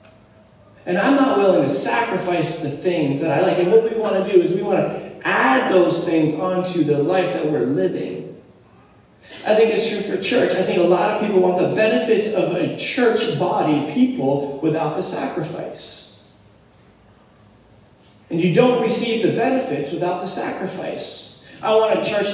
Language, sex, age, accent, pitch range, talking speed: English, male, 30-49, American, 130-200 Hz, 175 wpm